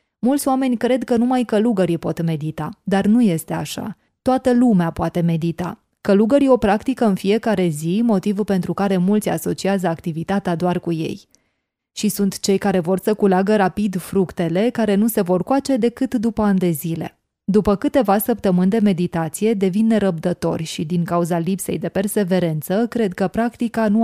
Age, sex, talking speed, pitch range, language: 20-39, female, 165 wpm, 175-225 Hz, Hungarian